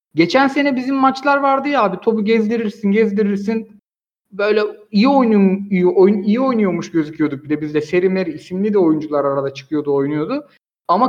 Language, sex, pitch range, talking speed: Turkish, male, 175-235 Hz, 160 wpm